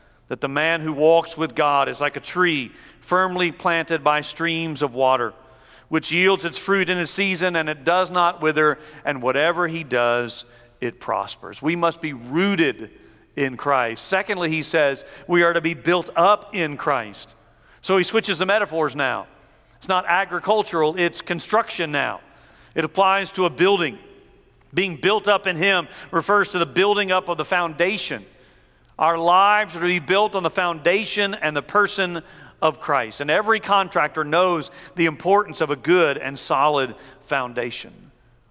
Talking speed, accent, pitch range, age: 170 wpm, American, 140-180 Hz, 40-59